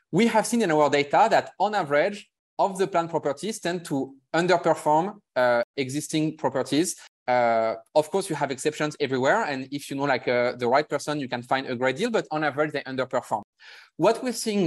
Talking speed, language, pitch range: 200 wpm, English, 135-175 Hz